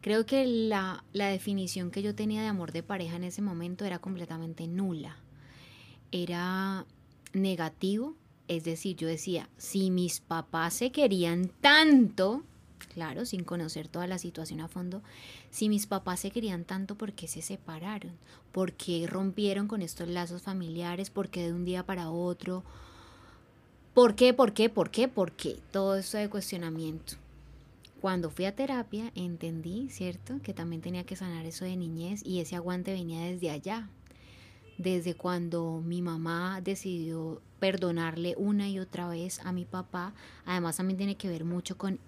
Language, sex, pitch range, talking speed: Spanish, female, 165-195 Hz, 165 wpm